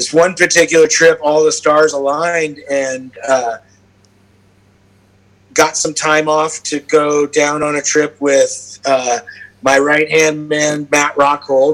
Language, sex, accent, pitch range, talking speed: English, male, American, 125-160 Hz, 140 wpm